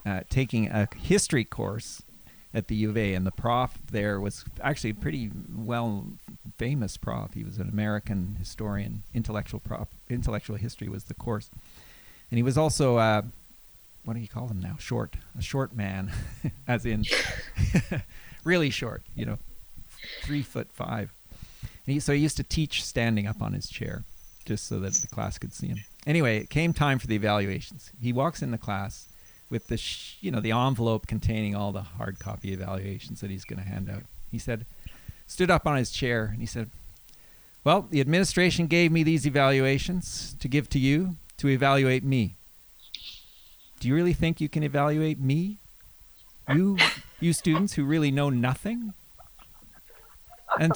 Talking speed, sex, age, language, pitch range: 170 wpm, male, 40-59, English, 105-150 Hz